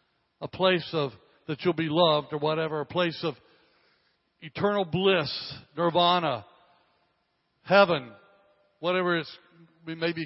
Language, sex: English, male